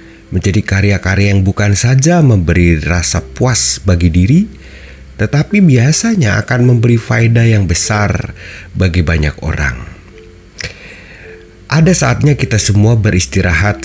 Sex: male